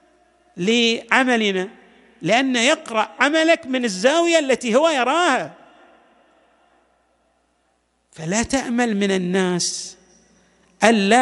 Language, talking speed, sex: Arabic, 75 wpm, male